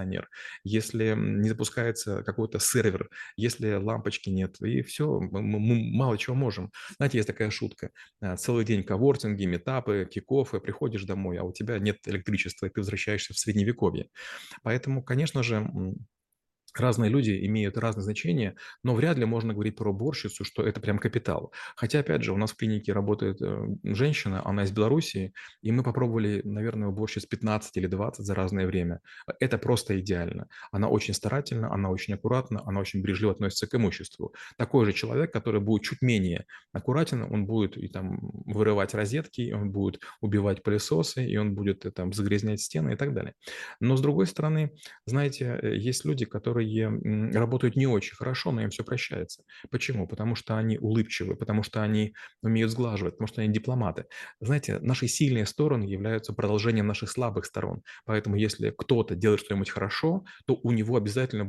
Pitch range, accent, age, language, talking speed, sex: 100-120 Hz, native, 30-49, Russian, 170 wpm, male